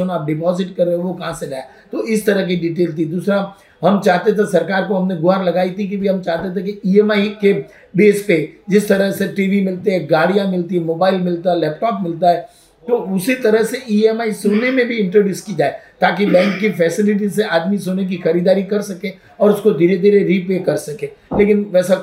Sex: male